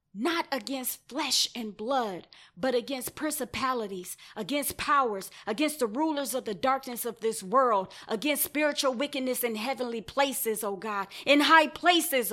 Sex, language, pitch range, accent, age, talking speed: female, English, 240-295 Hz, American, 20-39, 145 wpm